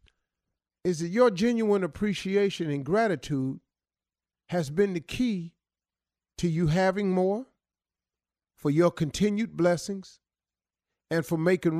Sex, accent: male, American